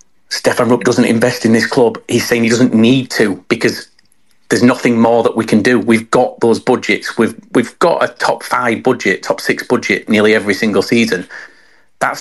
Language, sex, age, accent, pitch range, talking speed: English, male, 40-59, British, 115-140 Hz, 195 wpm